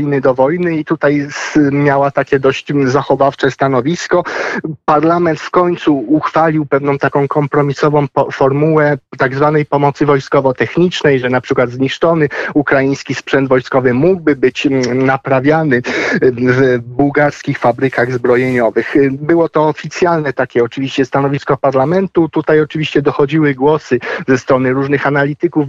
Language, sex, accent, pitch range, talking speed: Polish, male, native, 135-150 Hz, 115 wpm